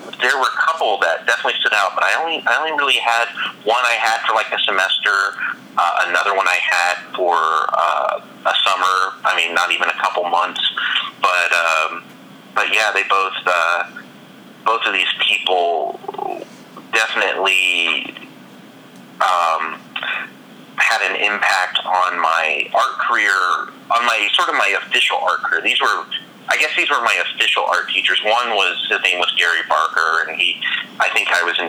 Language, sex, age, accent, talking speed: English, male, 30-49, American, 170 wpm